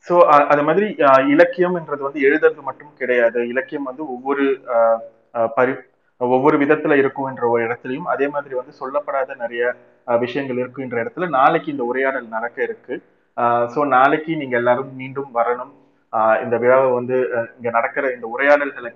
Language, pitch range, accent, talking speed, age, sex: Tamil, 125-155 Hz, native, 135 wpm, 30-49, male